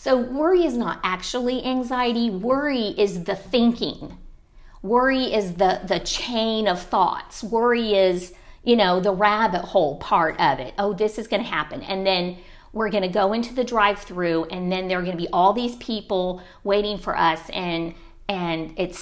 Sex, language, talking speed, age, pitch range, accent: female, English, 185 wpm, 50-69, 180-230 Hz, American